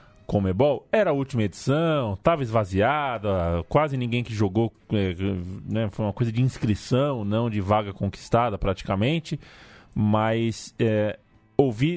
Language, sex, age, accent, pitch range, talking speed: Portuguese, male, 20-39, Brazilian, 105-130 Hz, 125 wpm